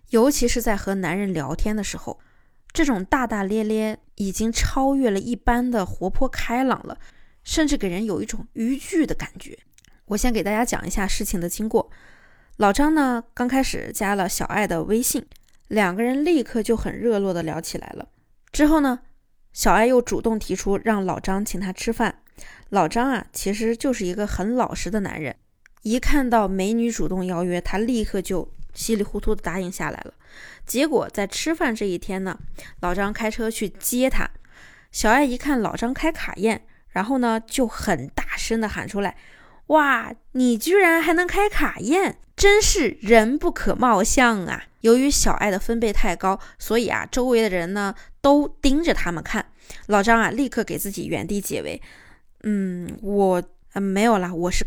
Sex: female